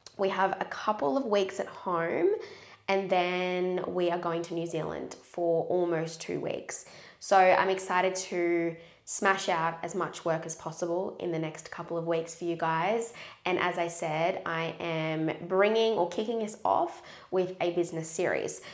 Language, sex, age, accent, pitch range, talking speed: English, female, 20-39, Australian, 165-190 Hz, 175 wpm